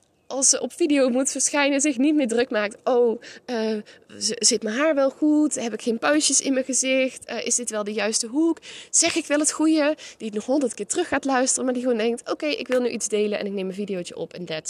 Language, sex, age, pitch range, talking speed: Dutch, female, 20-39, 215-260 Hz, 265 wpm